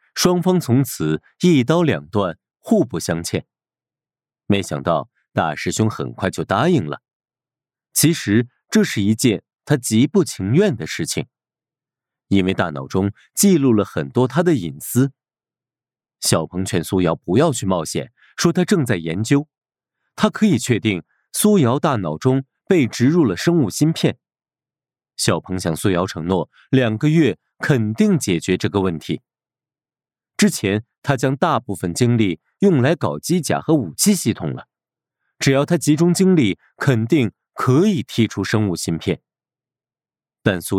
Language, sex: Chinese, male